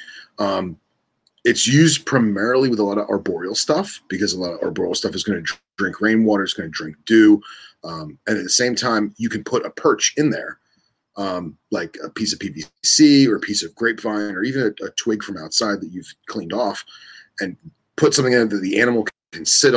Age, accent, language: 30-49, American, English